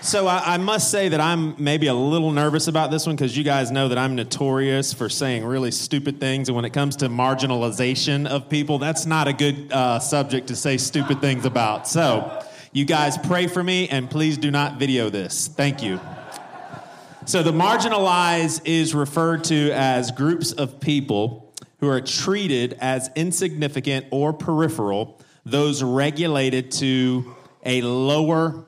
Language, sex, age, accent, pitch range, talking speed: English, male, 30-49, American, 130-160 Hz, 170 wpm